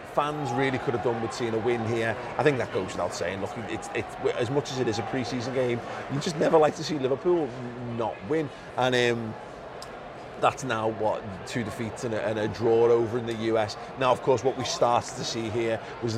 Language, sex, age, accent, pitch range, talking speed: English, male, 30-49, British, 115-130 Hz, 230 wpm